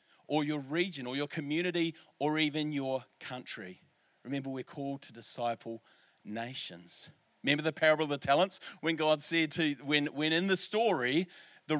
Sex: male